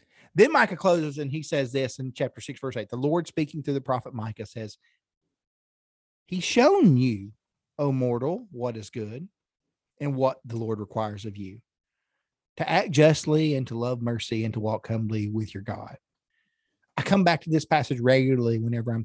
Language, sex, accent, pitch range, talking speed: English, male, American, 115-145 Hz, 185 wpm